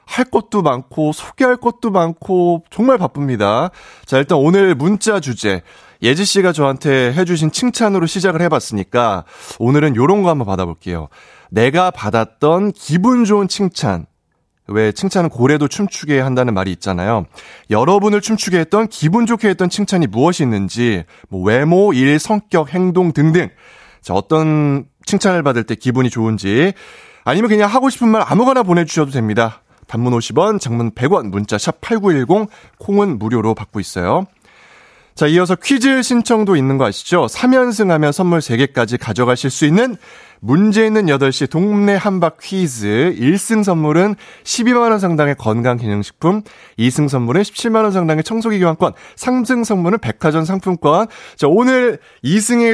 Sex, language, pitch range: male, Korean, 120-200 Hz